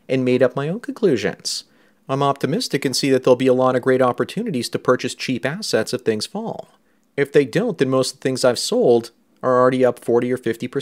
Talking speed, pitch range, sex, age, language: 220 wpm, 125-140 Hz, male, 30-49, English